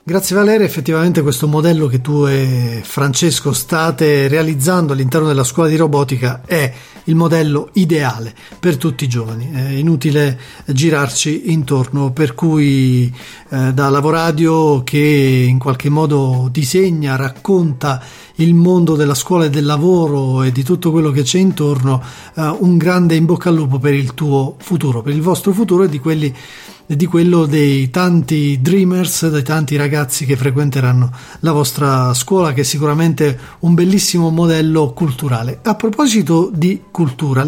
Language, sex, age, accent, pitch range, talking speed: Italian, male, 40-59, native, 140-170 Hz, 150 wpm